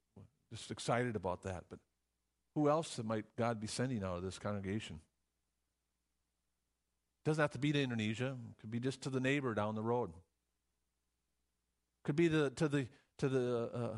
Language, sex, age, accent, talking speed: English, male, 50-69, American, 165 wpm